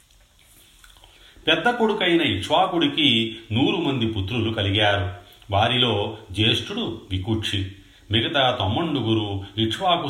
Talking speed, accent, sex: 75 wpm, native, male